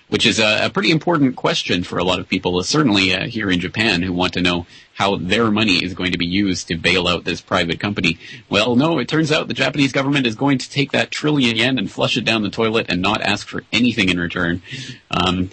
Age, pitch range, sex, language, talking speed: 30-49, 90-115 Hz, male, English, 245 wpm